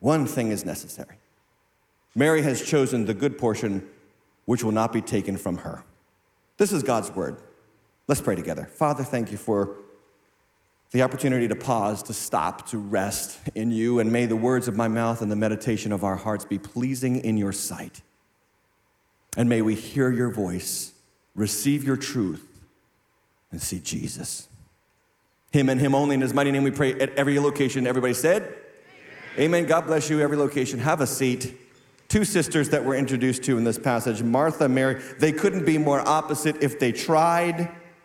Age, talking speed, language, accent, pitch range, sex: 40-59, 175 wpm, English, American, 115-145 Hz, male